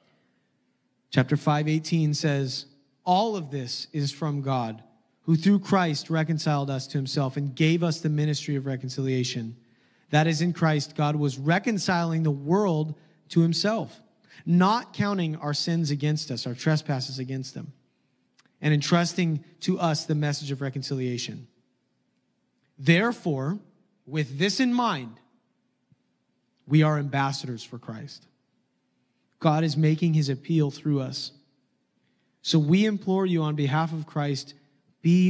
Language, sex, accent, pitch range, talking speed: English, male, American, 140-165 Hz, 135 wpm